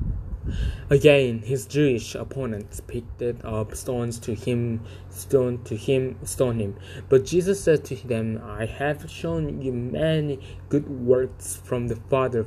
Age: 20-39